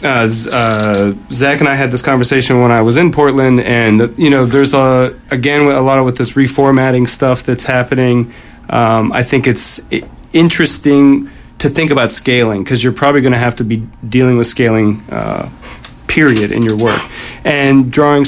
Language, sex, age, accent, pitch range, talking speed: English, male, 30-49, American, 120-140 Hz, 190 wpm